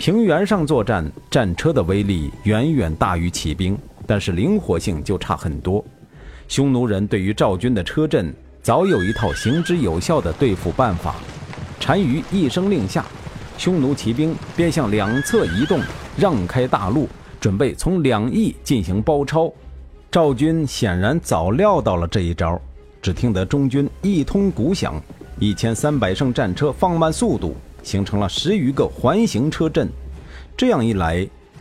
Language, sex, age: Chinese, male, 50-69